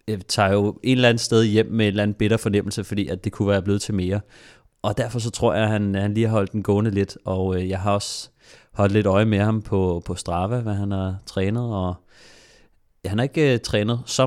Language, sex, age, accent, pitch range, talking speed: Danish, male, 30-49, native, 95-110 Hz, 250 wpm